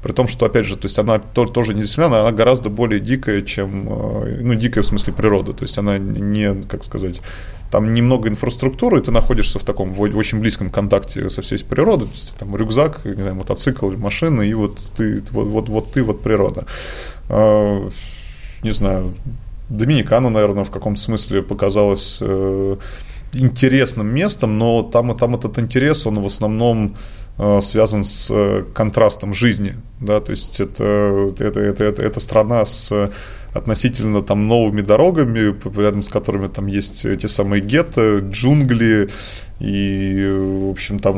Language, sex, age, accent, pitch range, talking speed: Russian, male, 20-39, native, 100-115 Hz, 155 wpm